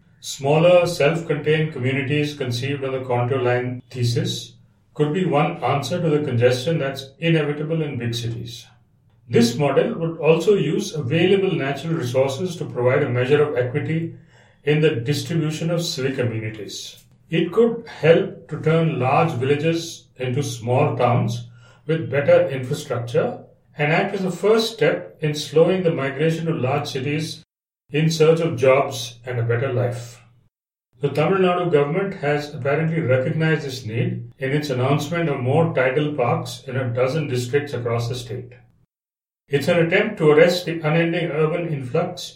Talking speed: 150 wpm